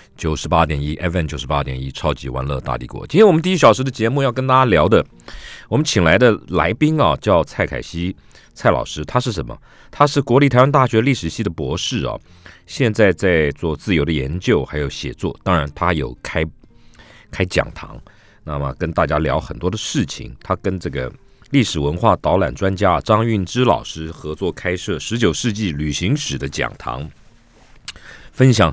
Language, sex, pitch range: Chinese, male, 75-120 Hz